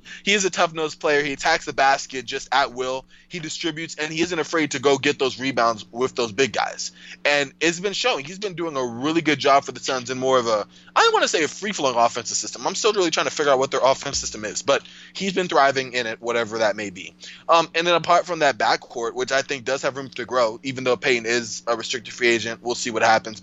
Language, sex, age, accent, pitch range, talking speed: English, male, 20-39, American, 120-155 Hz, 265 wpm